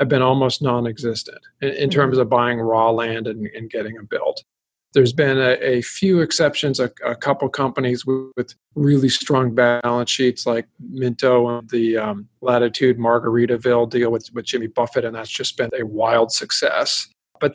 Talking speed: 175 wpm